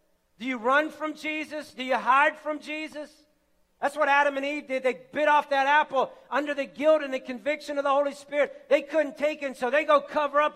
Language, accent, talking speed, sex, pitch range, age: English, American, 225 wpm, male, 260-305 Hz, 40-59